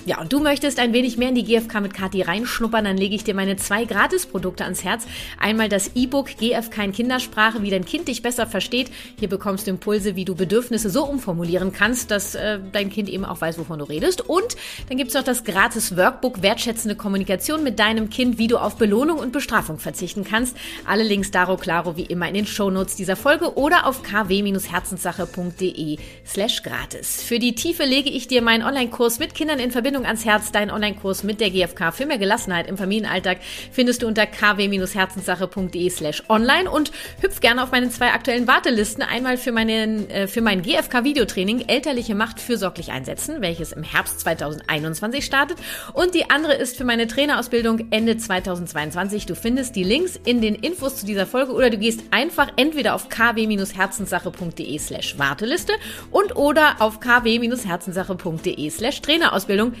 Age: 30-49